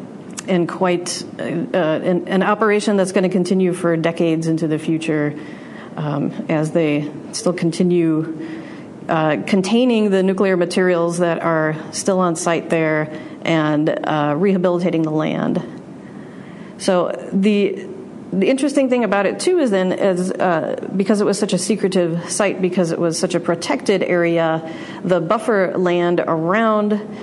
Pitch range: 165-190 Hz